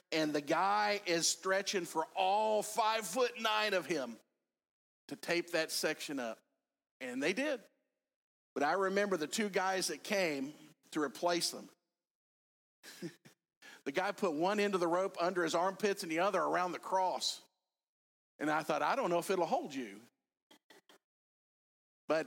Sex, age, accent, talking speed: male, 50-69, American, 160 wpm